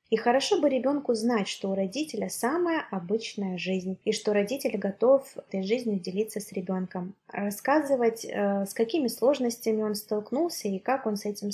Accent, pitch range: native, 200-250 Hz